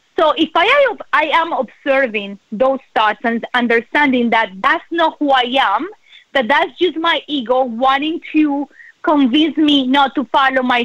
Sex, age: female, 30-49